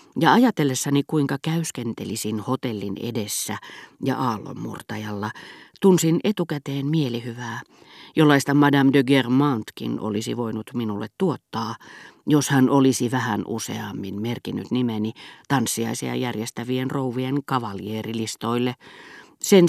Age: 40-59